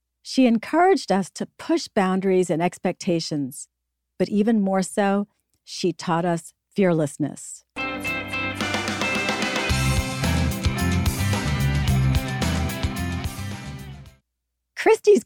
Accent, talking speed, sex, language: American, 65 wpm, female, English